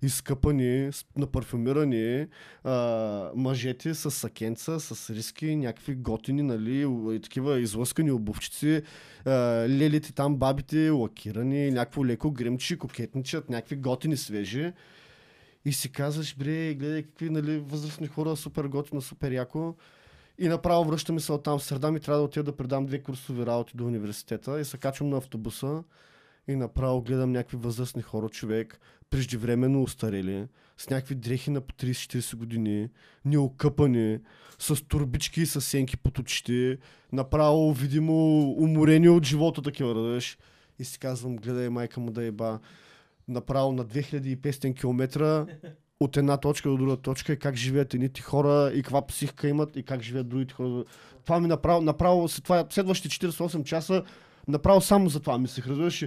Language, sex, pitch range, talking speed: Bulgarian, male, 125-150 Hz, 150 wpm